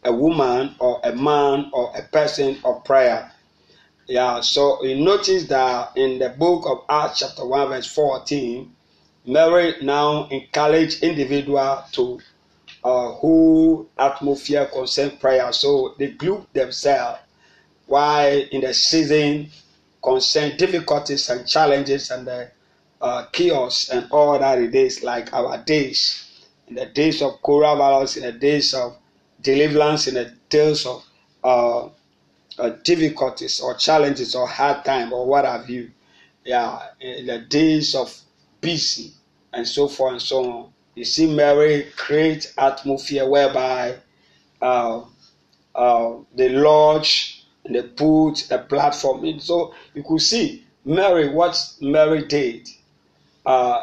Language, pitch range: English, 125-150 Hz